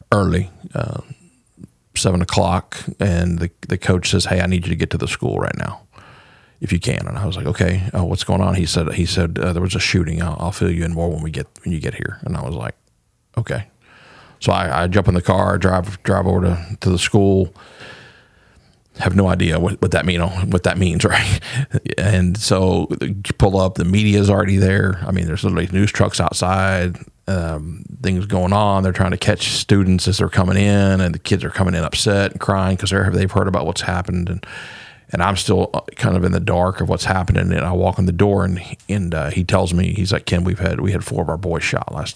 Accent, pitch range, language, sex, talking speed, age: American, 90-100 Hz, English, male, 235 wpm, 40-59